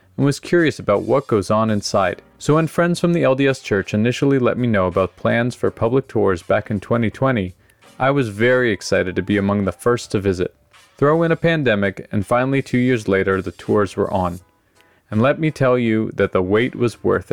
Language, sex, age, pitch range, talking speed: English, male, 30-49, 100-130 Hz, 210 wpm